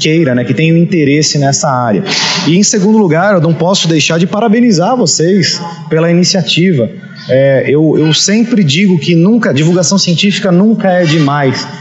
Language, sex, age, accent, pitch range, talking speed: Portuguese, male, 30-49, Brazilian, 150-190 Hz, 160 wpm